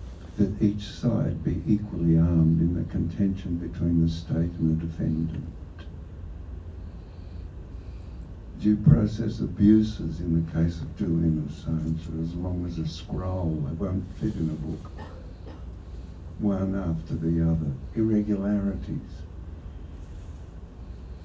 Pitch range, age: 80-105 Hz, 60-79